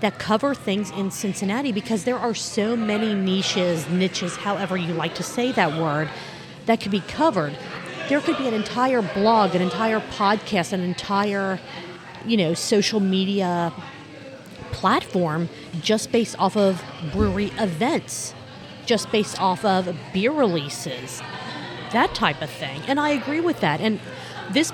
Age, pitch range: 40-59, 175-220 Hz